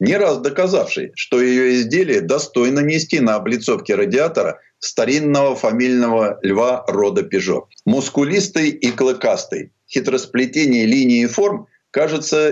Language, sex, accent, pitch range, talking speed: Russian, male, native, 130-195 Hz, 115 wpm